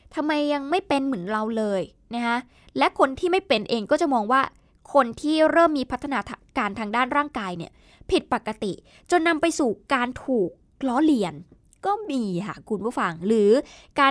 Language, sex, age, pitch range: Thai, female, 20-39, 225-290 Hz